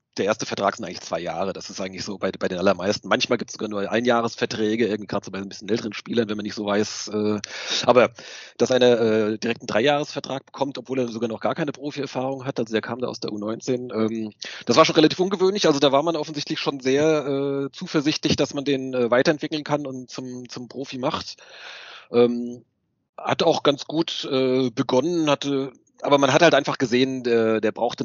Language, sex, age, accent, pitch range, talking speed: German, male, 40-59, German, 110-140 Hz, 195 wpm